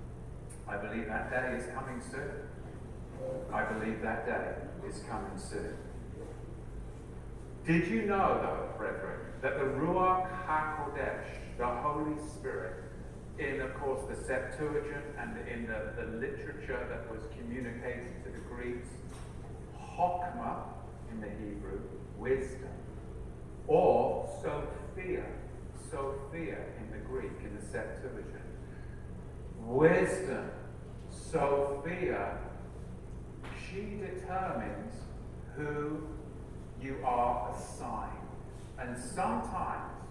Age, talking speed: 50-69, 100 wpm